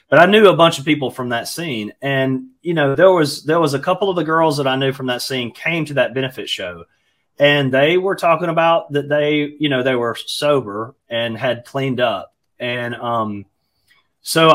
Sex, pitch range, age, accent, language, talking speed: male, 115-145 Hz, 30-49, American, English, 215 wpm